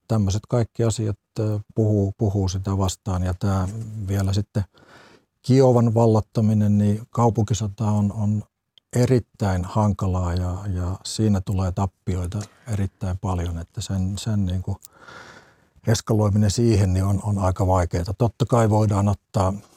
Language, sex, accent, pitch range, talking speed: Finnish, male, native, 95-110 Hz, 130 wpm